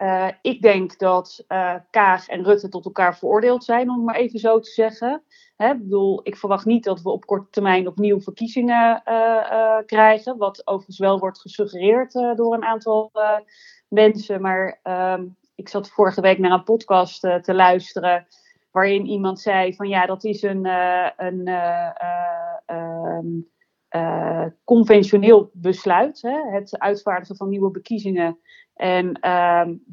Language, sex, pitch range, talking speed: Dutch, female, 180-215 Hz, 155 wpm